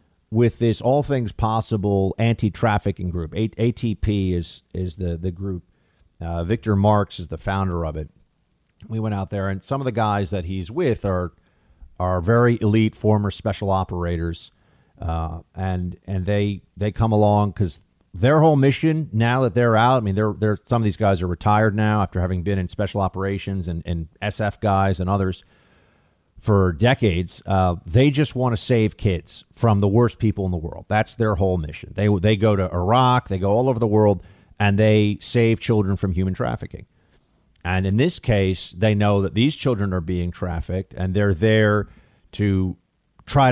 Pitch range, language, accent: 95-115 Hz, English, American